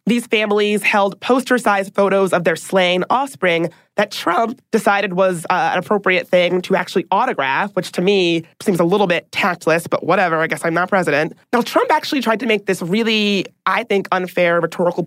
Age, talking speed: 20-39, 185 wpm